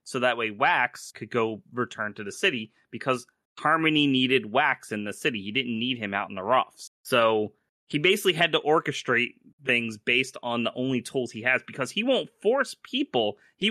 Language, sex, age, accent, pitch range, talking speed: English, male, 30-49, American, 115-150 Hz, 195 wpm